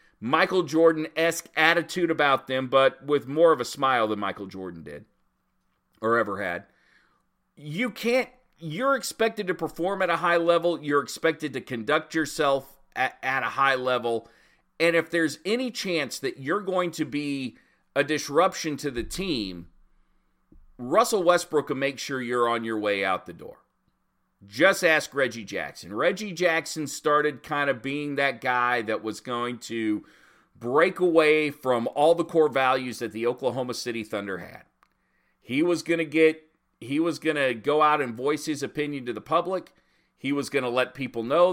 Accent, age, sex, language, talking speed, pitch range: American, 40-59, male, English, 170 wpm, 130-170 Hz